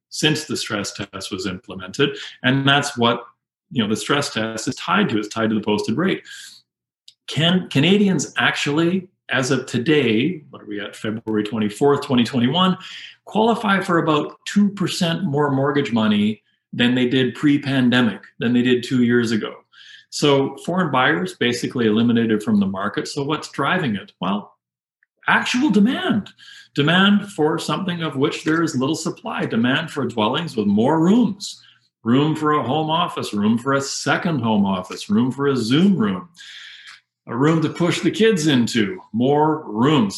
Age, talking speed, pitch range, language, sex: 40-59, 160 wpm, 115-165 Hz, English, male